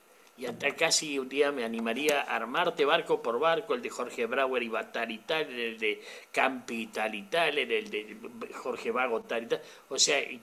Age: 50-69